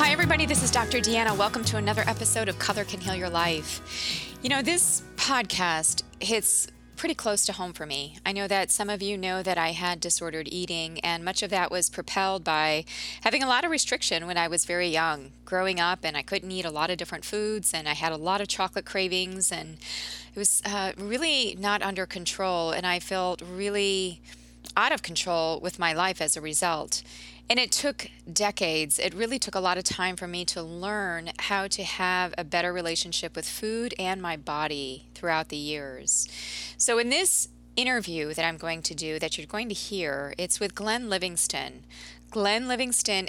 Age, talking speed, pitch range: 20-39, 200 wpm, 165-210 Hz